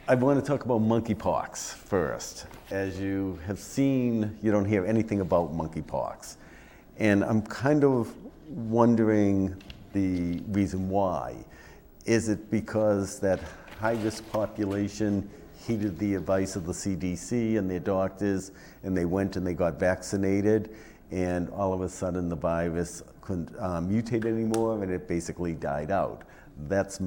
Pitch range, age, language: 85-110 Hz, 50-69, English